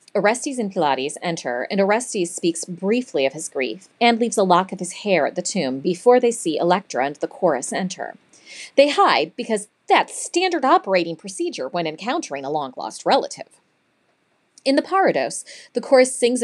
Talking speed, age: 170 wpm, 30-49